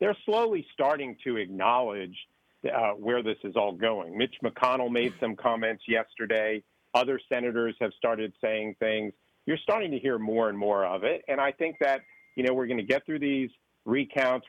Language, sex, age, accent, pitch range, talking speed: English, male, 50-69, American, 115-135 Hz, 185 wpm